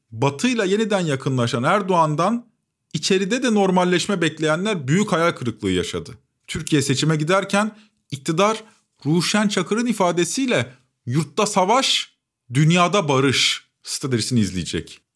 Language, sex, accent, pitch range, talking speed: Turkish, male, native, 125-190 Hz, 100 wpm